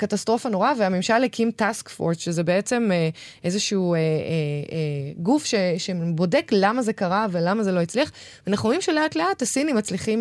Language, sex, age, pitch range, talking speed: Hebrew, female, 20-39, 170-215 Hz, 165 wpm